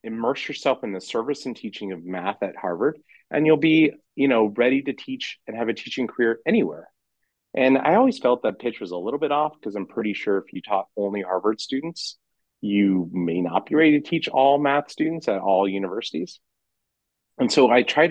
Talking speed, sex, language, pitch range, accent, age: 210 wpm, male, English, 100-135 Hz, American, 30-49